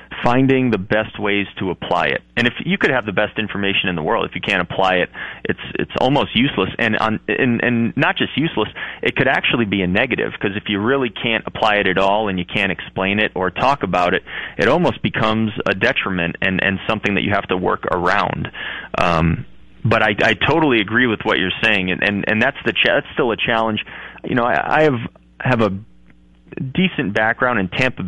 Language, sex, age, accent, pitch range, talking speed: English, male, 30-49, American, 100-120 Hz, 220 wpm